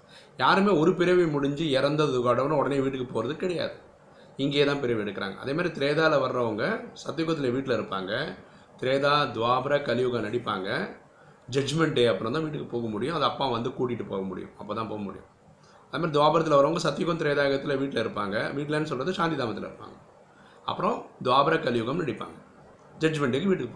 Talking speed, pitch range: 145 wpm, 115-150 Hz